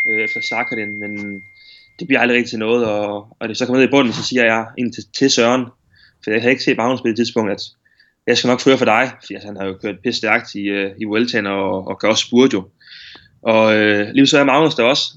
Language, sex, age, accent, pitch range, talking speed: Danish, male, 20-39, native, 105-125 Hz, 250 wpm